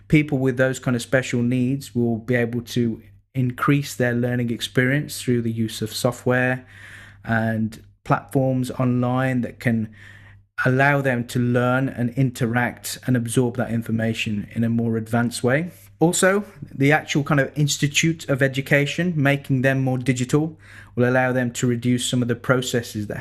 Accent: British